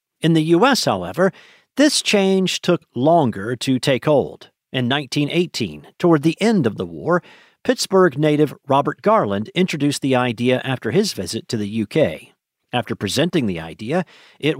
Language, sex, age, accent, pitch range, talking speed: English, male, 50-69, American, 120-170 Hz, 150 wpm